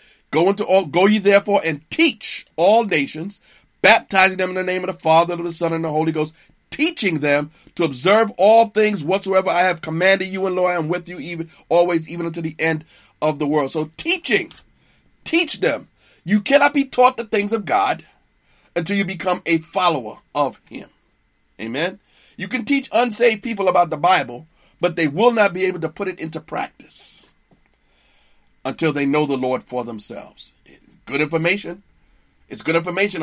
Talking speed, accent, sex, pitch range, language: 190 wpm, American, male, 155-205 Hz, English